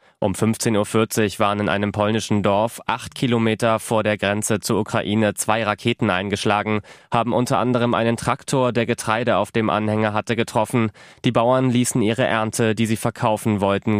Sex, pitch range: male, 100-120 Hz